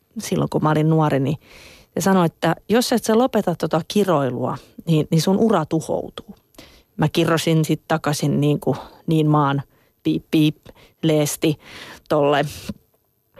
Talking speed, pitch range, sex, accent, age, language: 140 wpm, 155-195 Hz, female, native, 30-49, Finnish